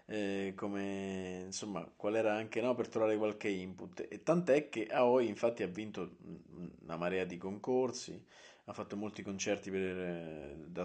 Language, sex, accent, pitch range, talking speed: Italian, male, native, 100-125 Hz, 155 wpm